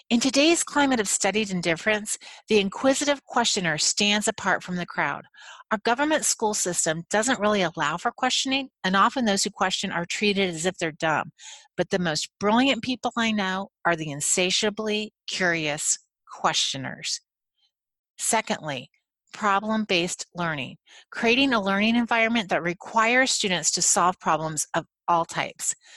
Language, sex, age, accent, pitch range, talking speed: English, female, 40-59, American, 175-230 Hz, 145 wpm